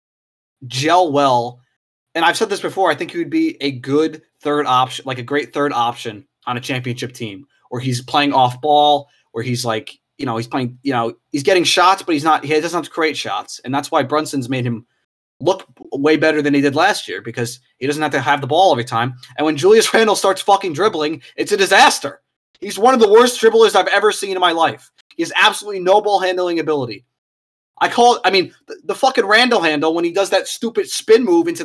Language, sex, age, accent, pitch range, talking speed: English, male, 20-39, American, 145-230 Hz, 230 wpm